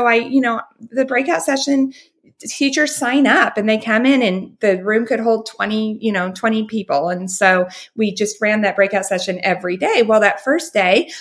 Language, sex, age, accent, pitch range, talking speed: English, female, 30-49, American, 175-230 Hz, 205 wpm